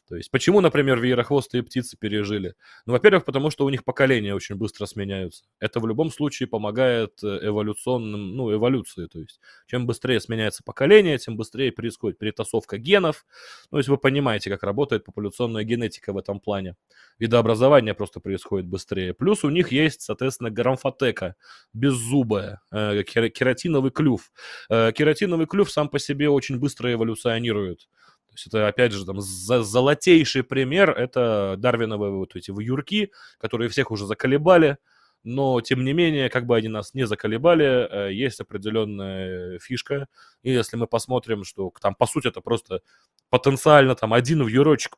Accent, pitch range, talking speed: native, 105-135 Hz, 150 wpm